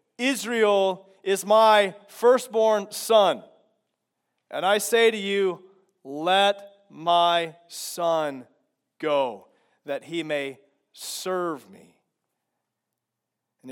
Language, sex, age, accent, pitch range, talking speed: English, male, 40-59, American, 145-185 Hz, 85 wpm